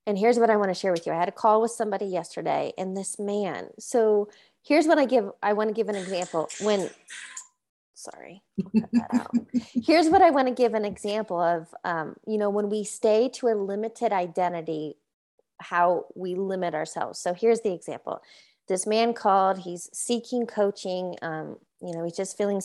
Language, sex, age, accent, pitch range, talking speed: English, female, 30-49, American, 185-240 Hz, 190 wpm